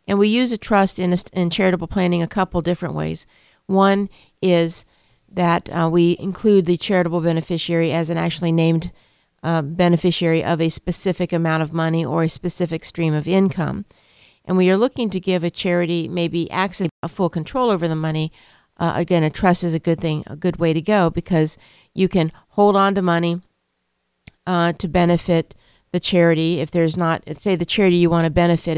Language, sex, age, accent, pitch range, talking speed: English, female, 50-69, American, 160-180 Hz, 190 wpm